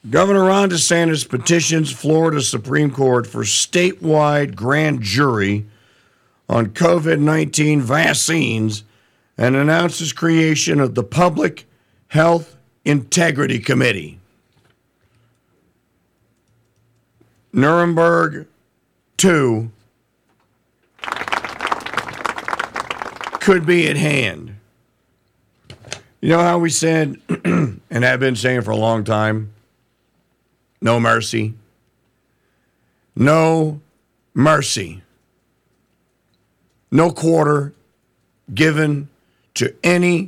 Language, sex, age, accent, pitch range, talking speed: English, male, 50-69, American, 120-160 Hz, 75 wpm